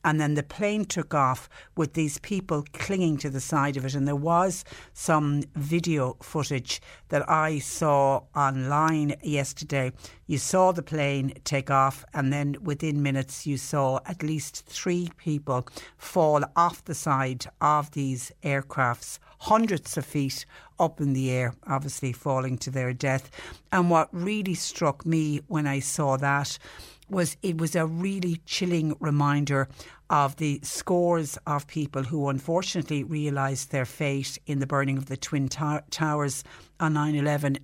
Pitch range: 135-160 Hz